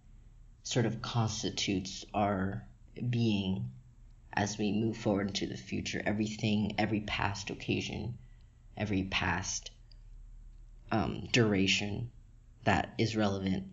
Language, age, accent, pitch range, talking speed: English, 20-39, American, 100-115 Hz, 100 wpm